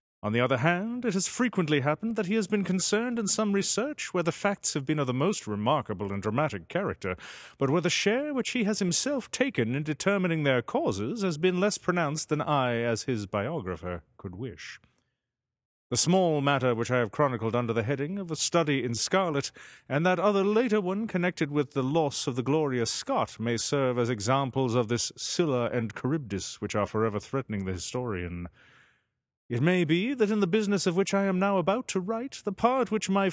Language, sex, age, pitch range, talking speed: English, male, 30-49, 120-195 Hz, 205 wpm